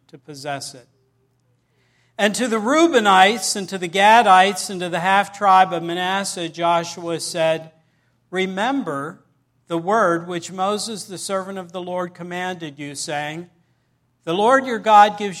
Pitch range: 160-195 Hz